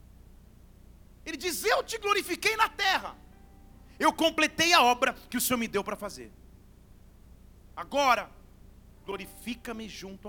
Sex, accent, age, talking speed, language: male, Brazilian, 40-59, 120 wpm, Portuguese